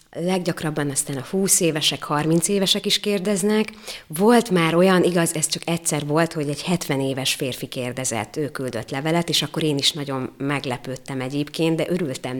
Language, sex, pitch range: Hungarian, female, 150-180 Hz